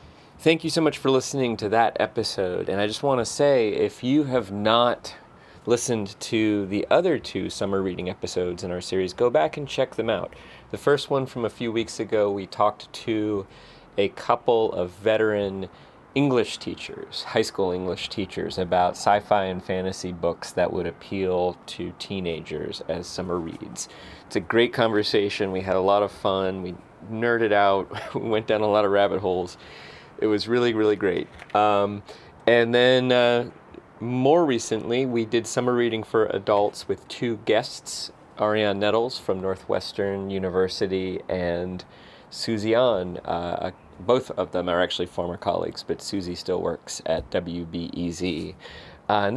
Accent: American